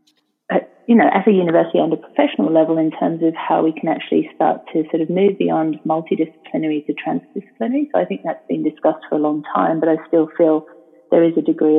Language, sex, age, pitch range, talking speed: English, female, 30-49, 155-180 Hz, 220 wpm